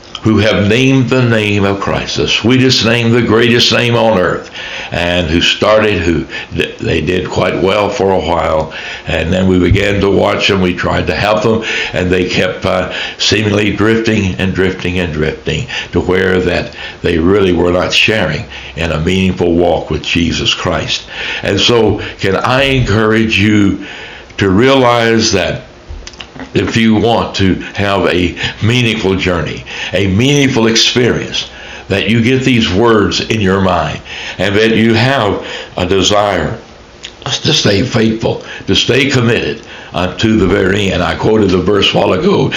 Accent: American